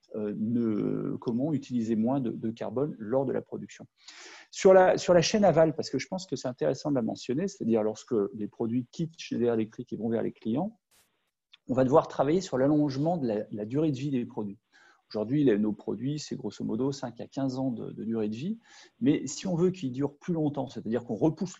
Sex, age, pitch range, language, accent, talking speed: male, 40-59, 115-160 Hz, French, French, 220 wpm